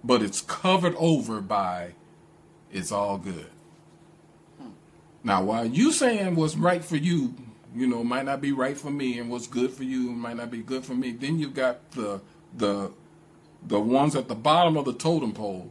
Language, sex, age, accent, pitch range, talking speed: English, male, 40-59, American, 100-165 Hz, 185 wpm